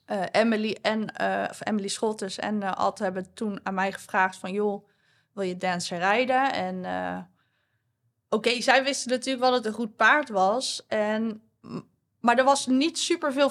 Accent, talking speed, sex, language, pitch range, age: Dutch, 175 wpm, female, Dutch, 190-235 Hz, 20-39